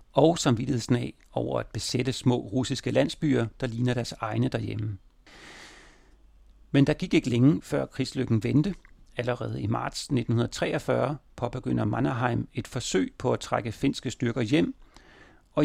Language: Danish